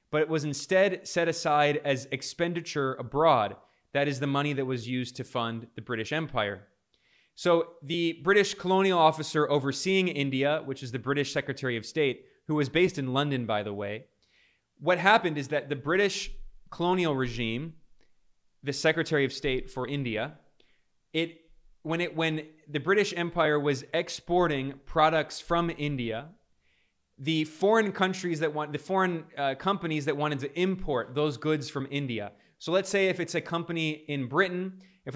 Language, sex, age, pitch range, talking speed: English, male, 20-39, 135-170 Hz, 165 wpm